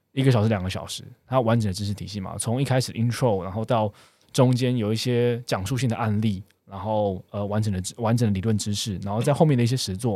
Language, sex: Chinese, male